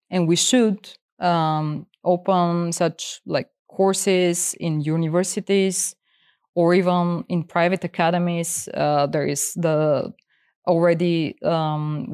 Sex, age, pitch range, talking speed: female, 20-39, 170-210 Hz, 105 wpm